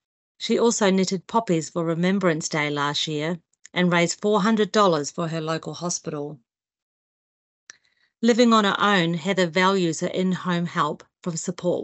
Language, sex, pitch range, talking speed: English, female, 160-195 Hz, 135 wpm